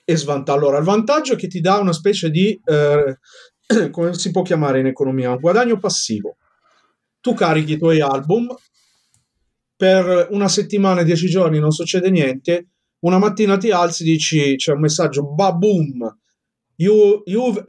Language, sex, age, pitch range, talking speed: Italian, male, 40-59, 140-200 Hz, 160 wpm